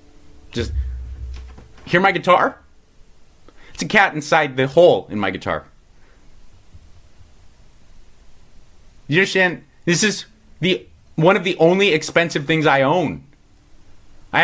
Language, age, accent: English, 30-49, American